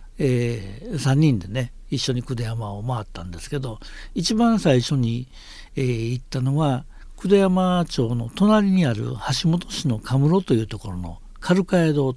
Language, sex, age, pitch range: Japanese, male, 60-79, 110-165 Hz